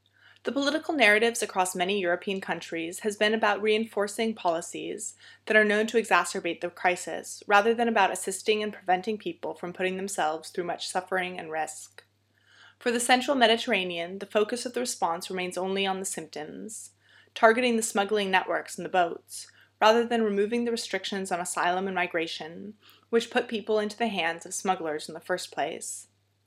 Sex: female